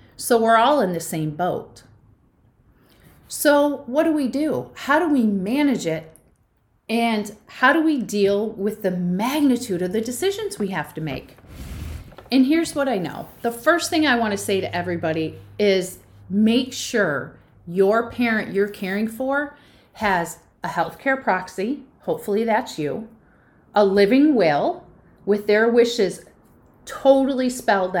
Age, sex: 40-59, female